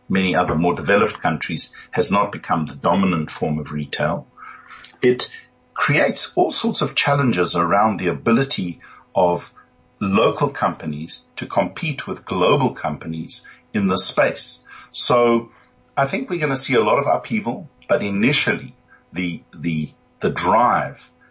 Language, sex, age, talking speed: English, male, 50-69, 140 wpm